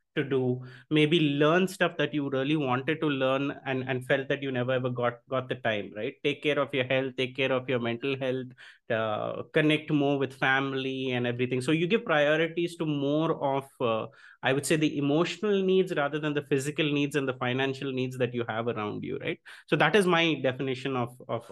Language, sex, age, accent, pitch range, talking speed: English, male, 30-49, Indian, 130-170 Hz, 215 wpm